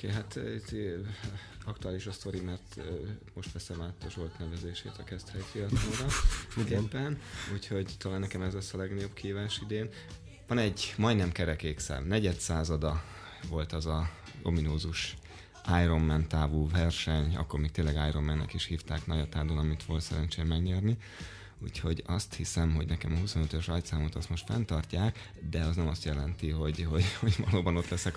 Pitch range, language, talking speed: 80-95 Hz, Hungarian, 150 wpm